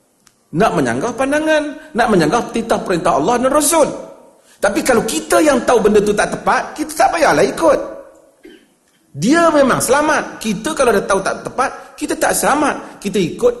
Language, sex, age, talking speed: Malay, male, 40-59, 165 wpm